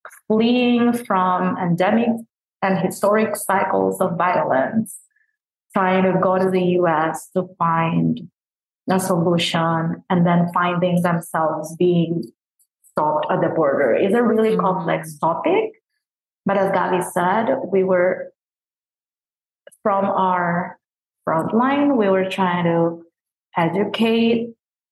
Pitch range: 175-215 Hz